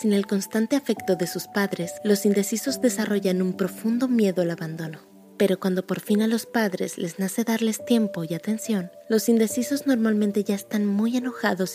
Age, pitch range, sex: 20-39, 175-220 Hz, female